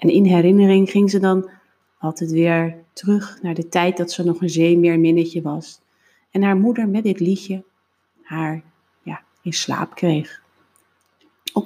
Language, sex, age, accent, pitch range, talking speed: English, female, 30-49, Dutch, 175-220 Hz, 155 wpm